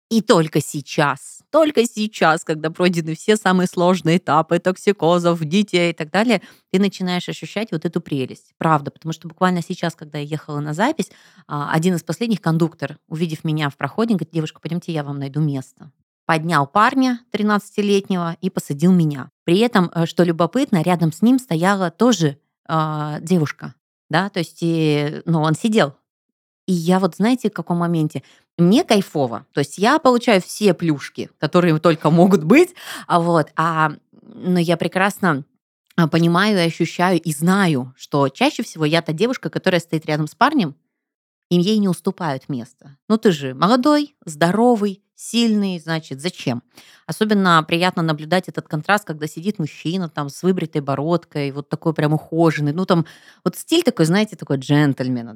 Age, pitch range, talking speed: 20-39, 155-200 Hz, 160 wpm